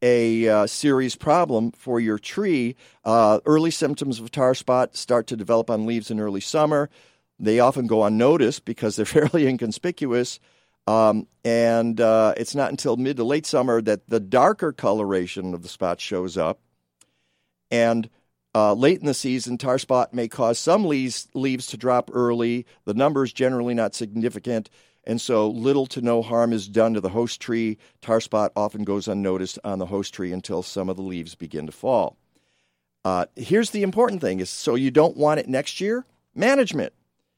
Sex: male